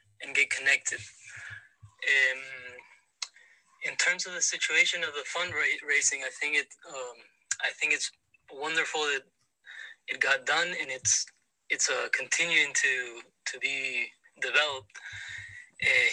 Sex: male